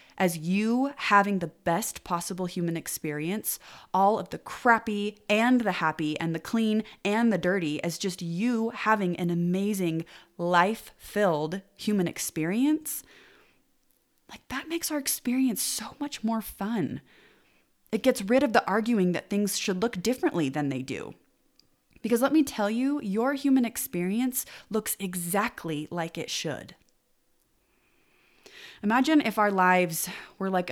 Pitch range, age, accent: 170-220 Hz, 20-39, American